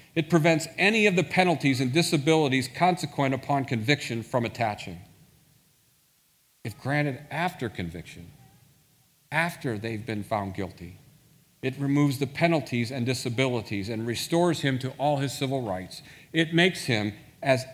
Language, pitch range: English, 120-155 Hz